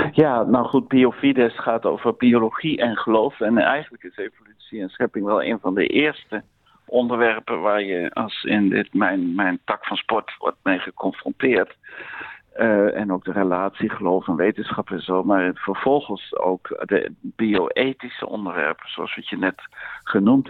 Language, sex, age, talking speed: Dutch, male, 50-69, 160 wpm